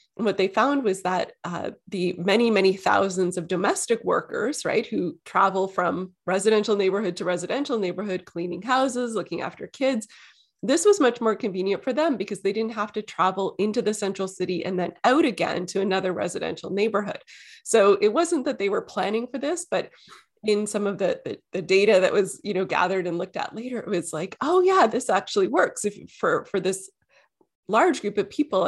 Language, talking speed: English, 195 wpm